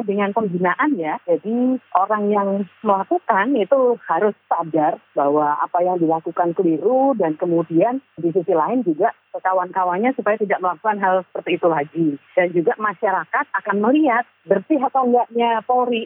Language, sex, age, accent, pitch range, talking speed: Indonesian, female, 40-59, native, 185-260 Hz, 145 wpm